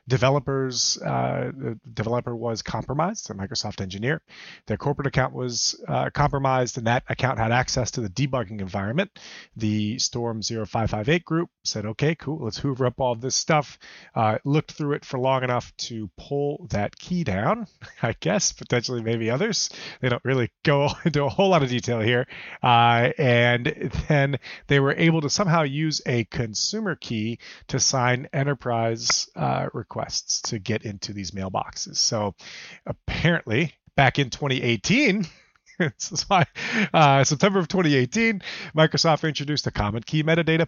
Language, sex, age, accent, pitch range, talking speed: English, male, 30-49, American, 110-140 Hz, 155 wpm